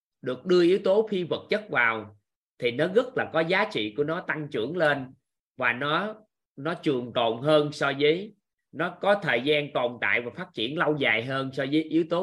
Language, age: Vietnamese, 20-39